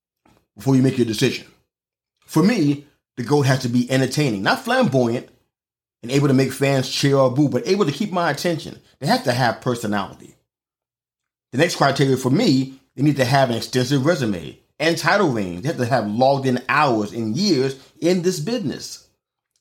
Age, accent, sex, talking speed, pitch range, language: 30-49, American, male, 185 wpm, 120-145 Hz, English